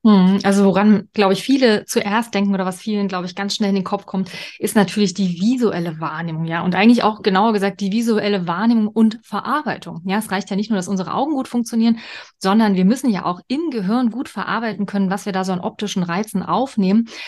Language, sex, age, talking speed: German, female, 30-49, 220 wpm